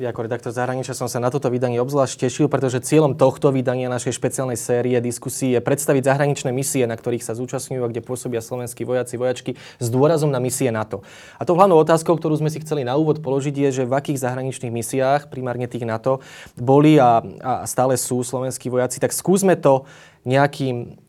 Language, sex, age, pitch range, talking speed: Slovak, male, 20-39, 120-145 Hz, 195 wpm